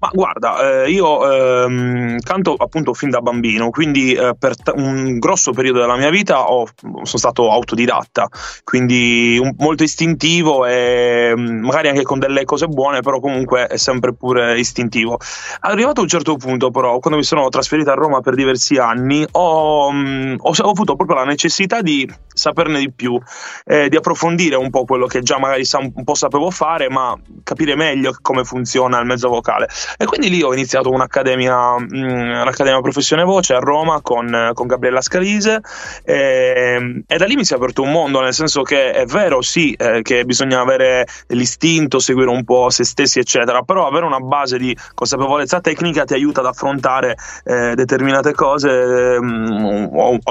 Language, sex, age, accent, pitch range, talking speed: Italian, male, 20-39, native, 125-145 Hz, 165 wpm